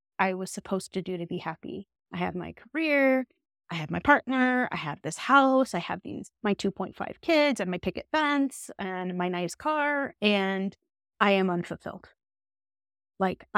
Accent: American